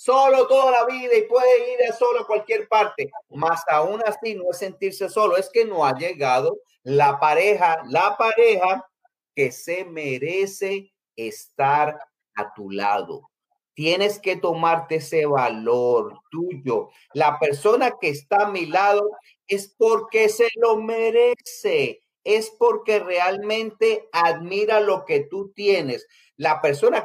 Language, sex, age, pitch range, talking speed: Spanish, male, 40-59, 185-285 Hz, 140 wpm